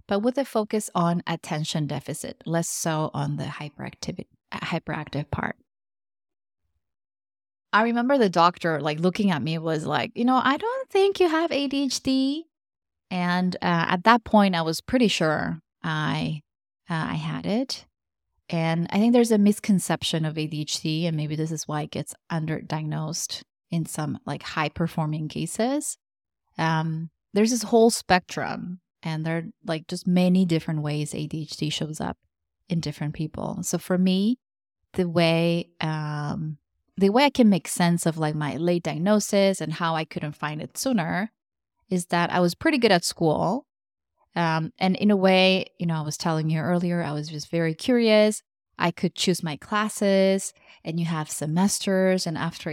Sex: female